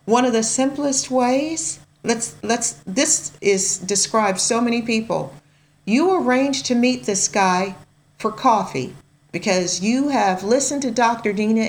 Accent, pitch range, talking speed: American, 175-235 Hz, 145 wpm